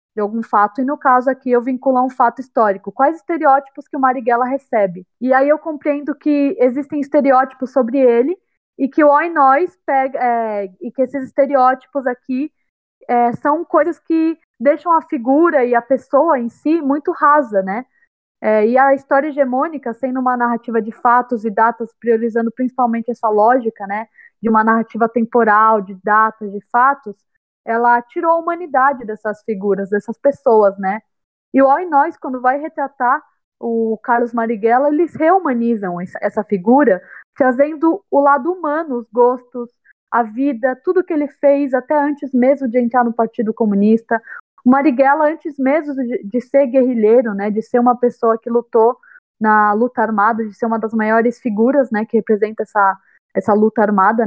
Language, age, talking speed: Portuguese, 20-39, 170 wpm